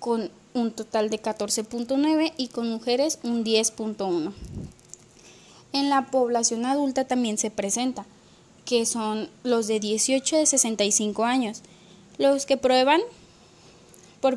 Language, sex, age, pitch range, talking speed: Spanish, female, 20-39, 215-265 Hz, 120 wpm